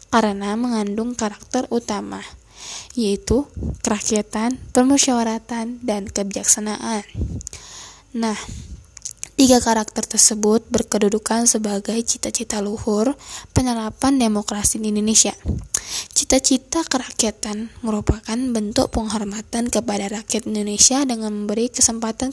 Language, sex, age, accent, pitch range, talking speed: Indonesian, female, 10-29, native, 215-245 Hz, 85 wpm